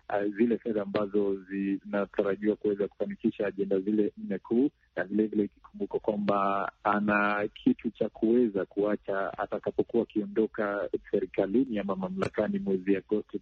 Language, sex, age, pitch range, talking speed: Swahili, male, 50-69, 100-120 Hz, 130 wpm